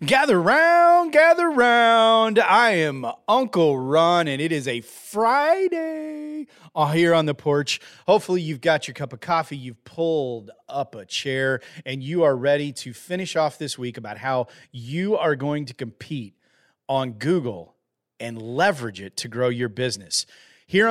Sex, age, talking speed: male, 30-49, 160 wpm